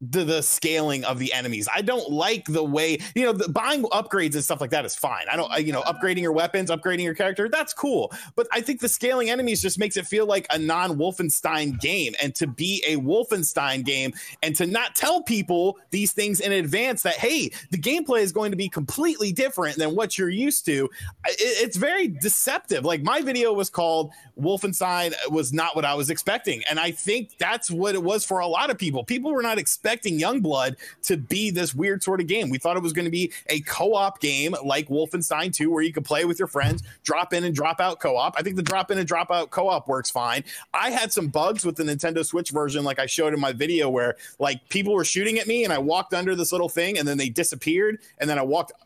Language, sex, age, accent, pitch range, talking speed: English, male, 30-49, American, 150-200 Hz, 235 wpm